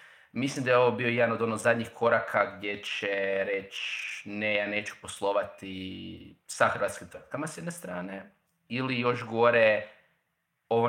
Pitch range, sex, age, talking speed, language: 105-130 Hz, male, 30-49, 145 wpm, Croatian